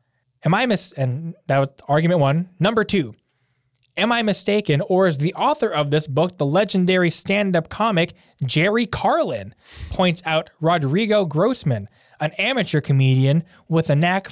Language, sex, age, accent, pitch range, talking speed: English, male, 20-39, American, 145-190 Hz, 150 wpm